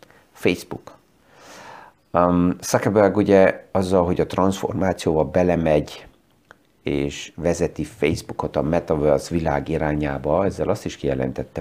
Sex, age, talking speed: male, 50-69, 100 wpm